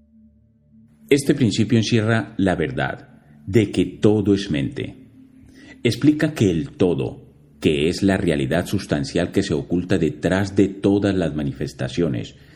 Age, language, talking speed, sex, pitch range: 40-59, Spanish, 130 wpm, male, 95-135 Hz